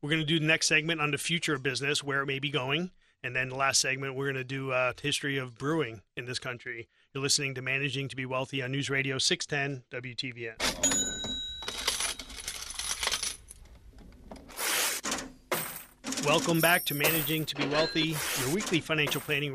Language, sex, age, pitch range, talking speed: English, male, 30-49, 135-155 Hz, 165 wpm